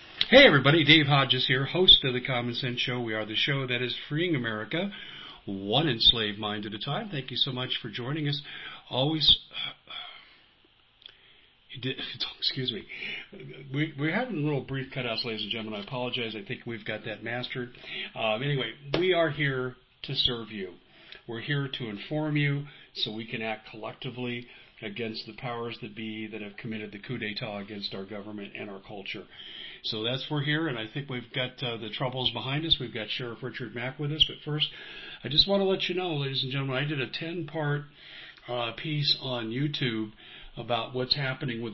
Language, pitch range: English, 110-140 Hz